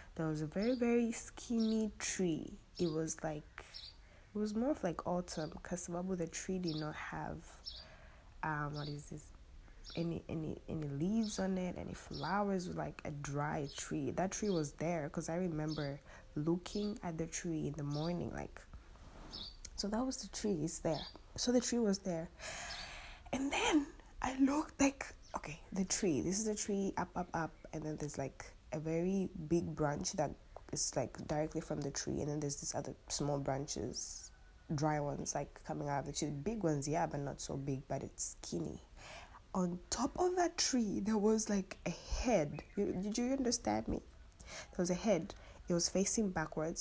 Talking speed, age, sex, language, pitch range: 180 wpm, 20-39, female, English, 145-200 Hz